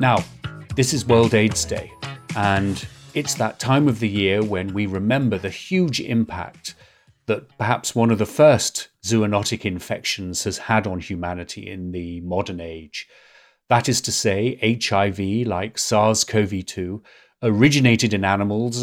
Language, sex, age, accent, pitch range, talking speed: English, male, 40-59, British, 100-125 Hz, 145 wpm